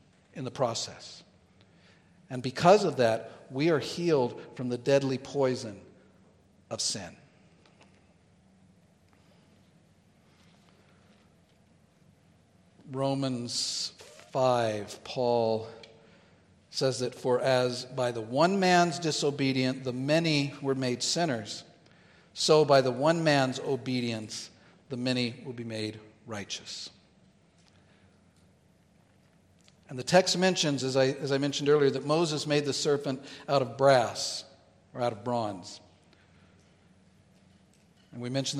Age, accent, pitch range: 50-69, American, 120-150 Hz